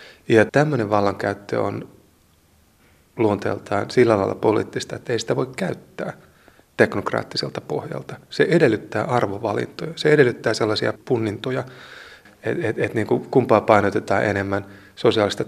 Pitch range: 100-125 Hz